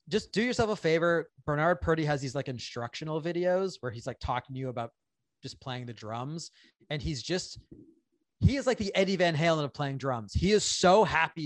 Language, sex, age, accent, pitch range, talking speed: English, male, 30-49, American, 125-170 Hz, 210 wpm